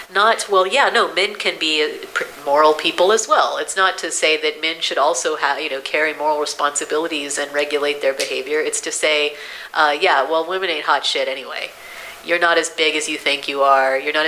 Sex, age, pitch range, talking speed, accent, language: female, 30-49, 140-185 Hz, 215 wpm, American, English